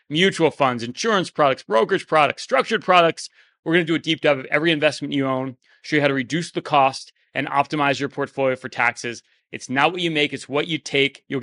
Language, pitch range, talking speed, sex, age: English, 125-160 Hz, 225 wpm, male, 30-49